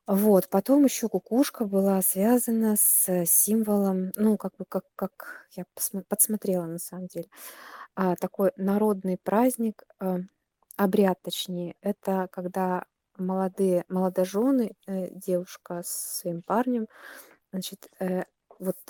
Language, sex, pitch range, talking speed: Russian, female, 185-215 Hz, 120 wpm